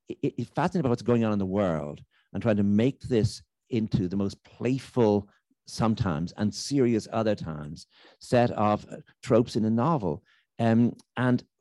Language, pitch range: English, 95-115 Hz